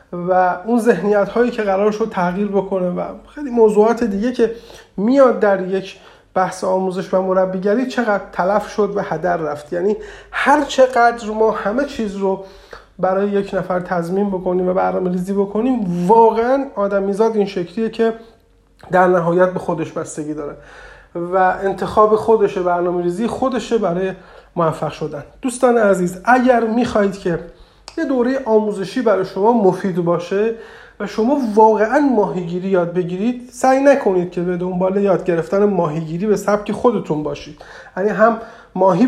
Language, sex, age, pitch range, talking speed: Persian, male, 30-49, 185-225 Hz, 145 wpm